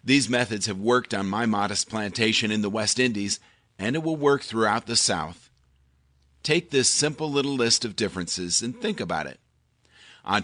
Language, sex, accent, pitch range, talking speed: English, male, American, 100-130 Hz, 180 wpm